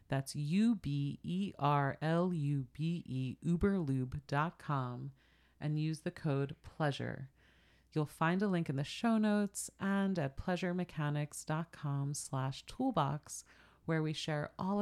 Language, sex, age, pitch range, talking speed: English, female, 30-49, 140-180 Hz, 100 wpm